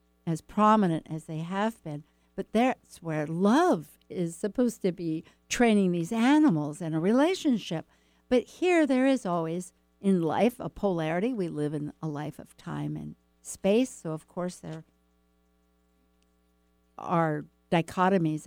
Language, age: English, 60-79